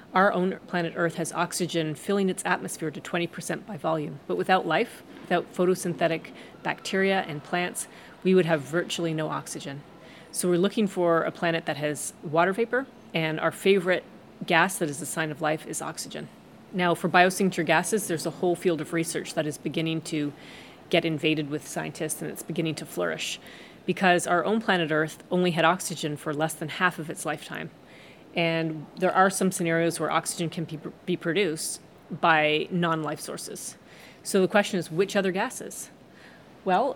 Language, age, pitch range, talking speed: English, 30-49, 160-185 Hz, 175 wpm